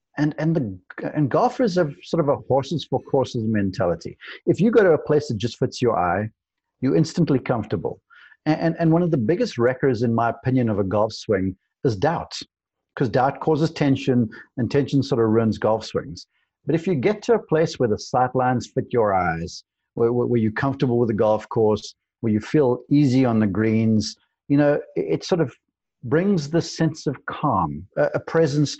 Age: 50-69